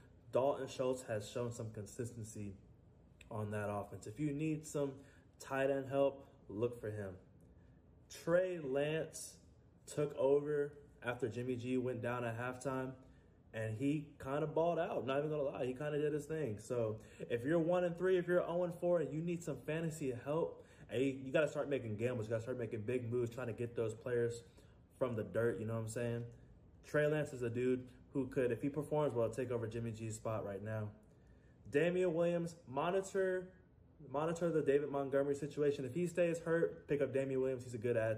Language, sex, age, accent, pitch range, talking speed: English, male, 20-39, American, 110-145 Hz, 205 wpm